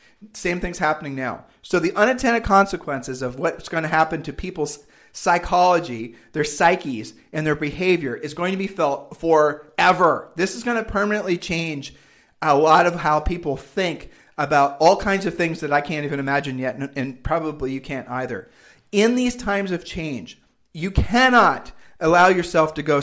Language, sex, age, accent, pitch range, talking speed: English, male, 40-59, American, 150-190 Hz, 170 wpm